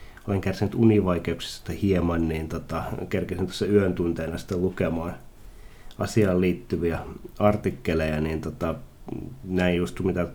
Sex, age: male, 30-49